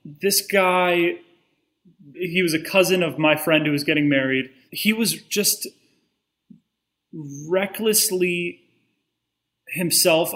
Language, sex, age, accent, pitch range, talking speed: English, male, 30-49, American, 145-180 Hz, 105 wpm